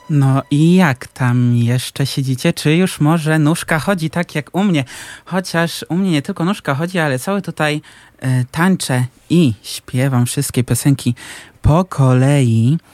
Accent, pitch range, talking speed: native, 125-155 Hz, 150 wpm